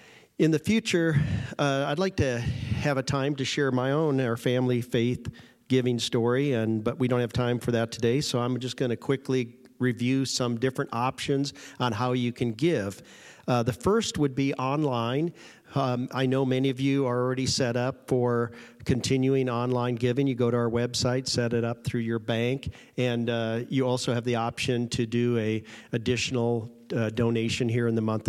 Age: 50-69